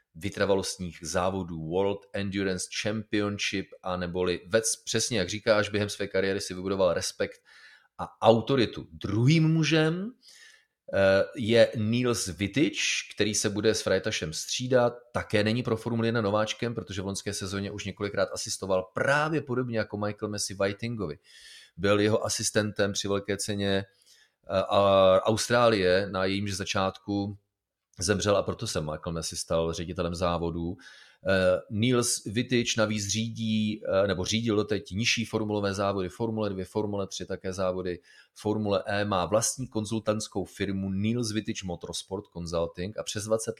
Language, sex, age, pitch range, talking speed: Czech, male, 30-49, 95-110 Hz, 135 wpm